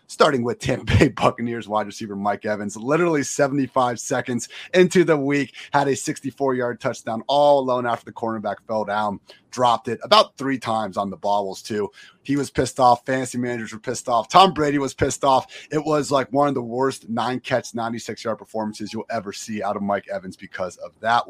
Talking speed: 195 wpm